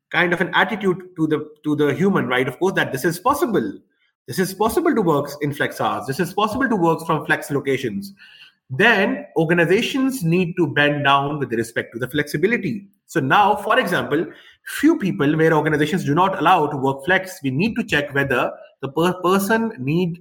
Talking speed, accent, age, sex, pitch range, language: 195 wpm, Indian, 30-49, male, 150-195 Hz, English